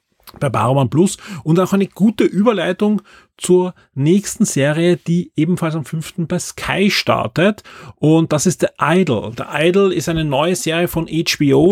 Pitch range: 140-175 Hz